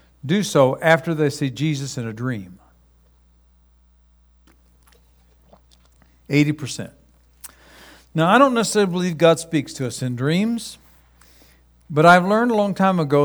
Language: English